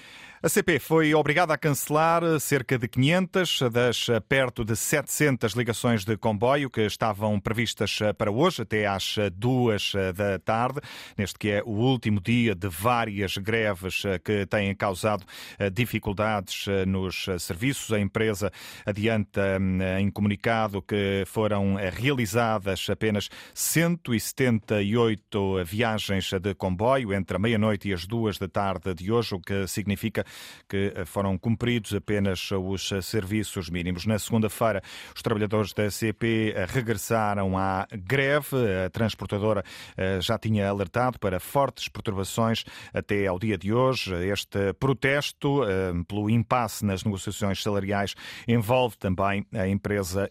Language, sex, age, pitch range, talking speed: Portuguese, male, 40-59, 100-120 Hz, 130 wpm